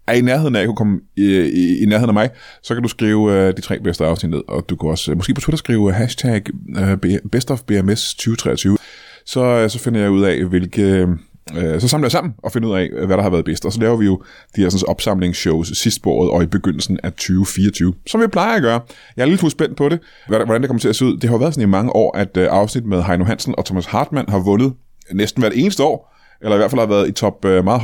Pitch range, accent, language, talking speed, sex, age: 95-125 Hz, native, Danish, 265 wpm, male, 20-39